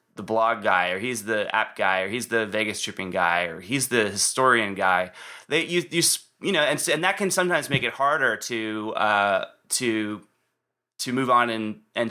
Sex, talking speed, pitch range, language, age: male, 200 wpm, 110-130 Hz, English, 20-39